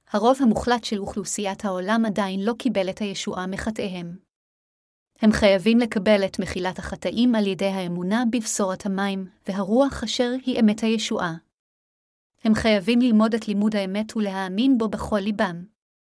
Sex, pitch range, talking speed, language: female, 195-230 Hz, 135 wpm, Hebrew